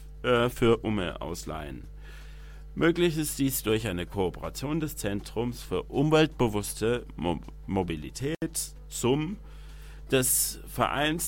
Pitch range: 95-145 Hz